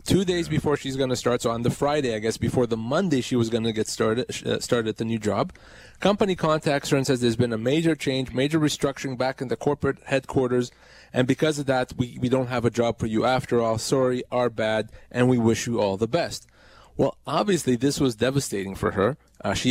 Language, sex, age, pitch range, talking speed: English, male, 20-39, 120-155 Hz, 230 wpm